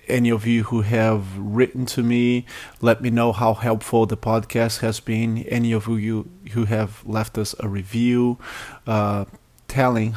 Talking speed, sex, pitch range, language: 165 wpm, male, 110-120 Hz, English